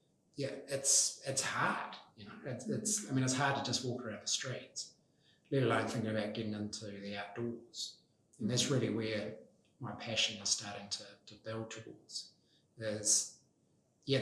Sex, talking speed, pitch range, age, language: male, 170 wpm, 110-125 Hz, 30-49, English